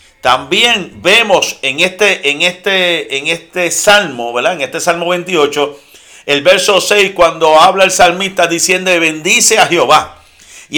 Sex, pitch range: male, 165-200 Hz